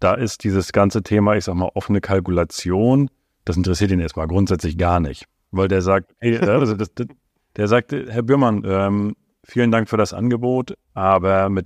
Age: 40-59